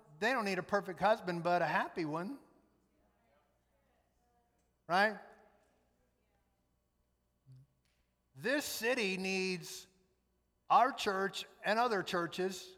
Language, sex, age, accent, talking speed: English, male, 50-69, American, 90 wpm